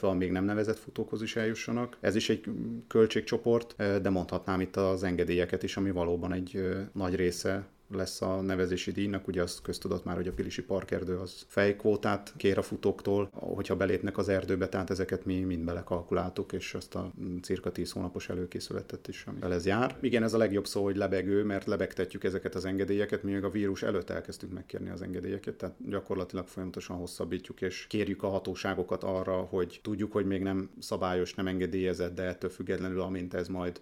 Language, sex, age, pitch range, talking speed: Hungarian, male, 30-49, 90-100 Hz, 185 wpm